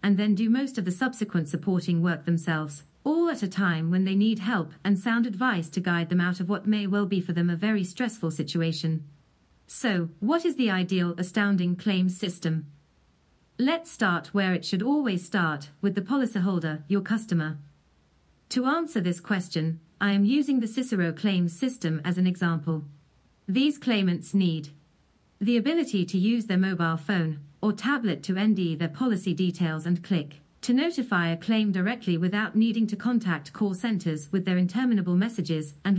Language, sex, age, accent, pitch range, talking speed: English, female, 40-59, British, 170-220 Hz, 175 wpm